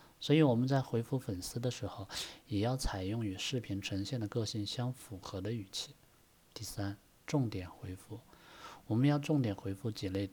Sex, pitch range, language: male, 100-125 Hz, Chinese